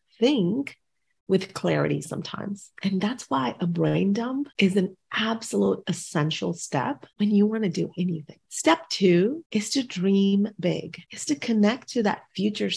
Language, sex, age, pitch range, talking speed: English, female, 30-49, 170-220 Hz, 155 wpm